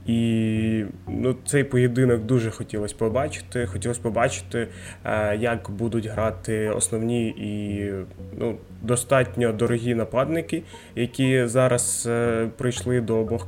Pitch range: 110-125 Hz